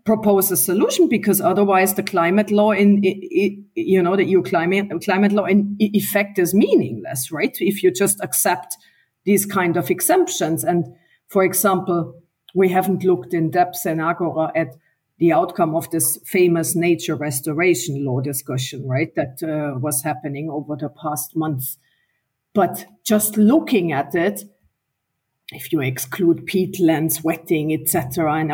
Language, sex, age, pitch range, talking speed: English, female, 50-69, 160-200 Hz, 145 wpm